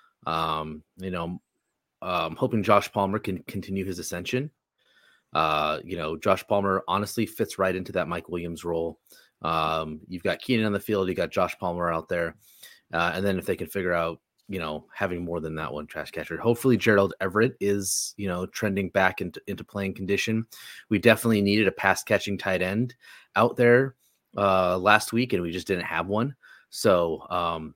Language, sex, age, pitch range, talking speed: English, male, 30-49, 95-115 Hz, 190 wpm